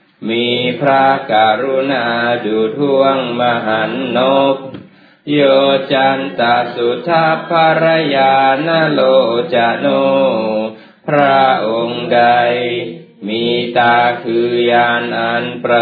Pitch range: 115-135 Hz